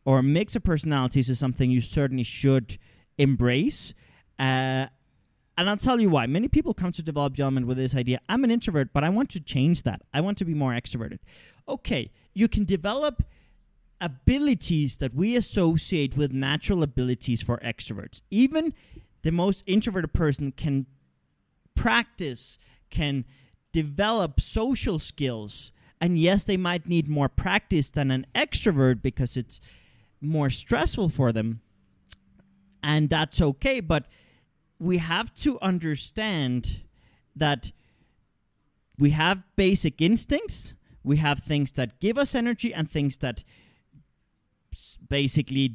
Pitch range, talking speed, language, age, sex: 130-180 Hz, 140 wpm, English, 30-49, male